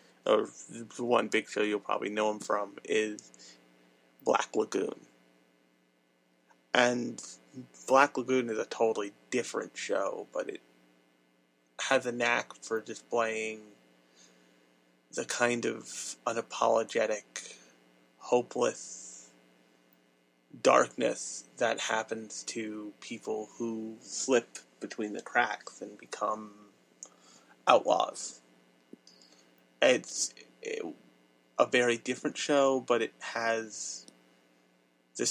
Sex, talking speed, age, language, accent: male, 95 wpm, 30-49, English, American